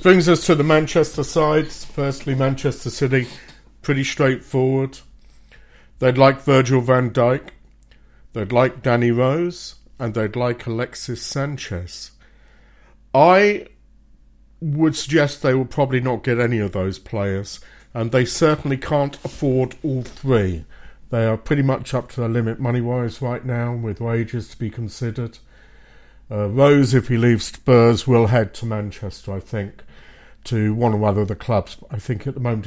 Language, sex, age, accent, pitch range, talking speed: English, male, 50-69, British, 110-130 Hz, 155 wpm